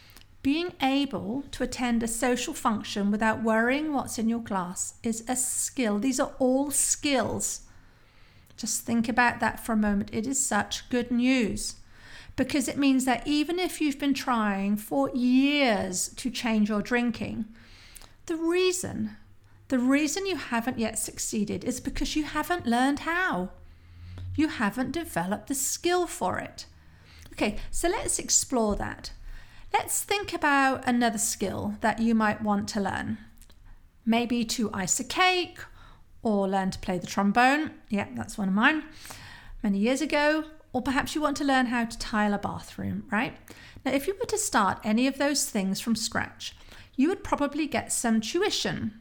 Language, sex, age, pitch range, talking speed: English, female, 50-69, 205-275 Hz, 160 wpm